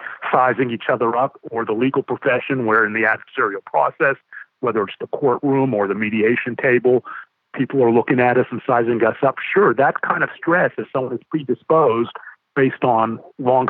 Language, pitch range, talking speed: English, 115-135 Hz, 185 wpm